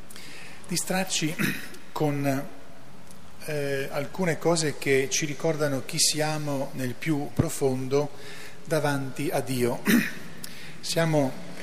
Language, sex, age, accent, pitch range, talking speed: Italian, male, 40-59, native, 115-145 Hz, 90 wpm